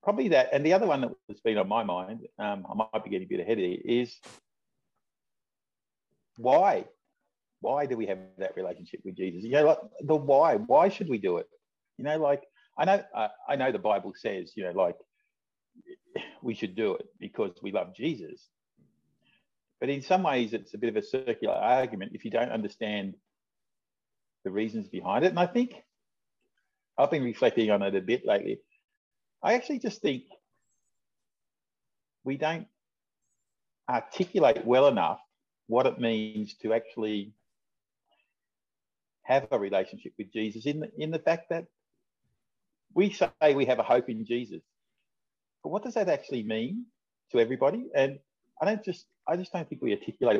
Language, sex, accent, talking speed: English, male, Australian, 170 wpm